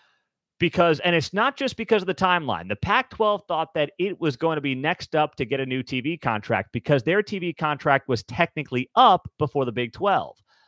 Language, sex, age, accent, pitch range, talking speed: English, male, 30-49, American, 135-180 Hz, 210 wpm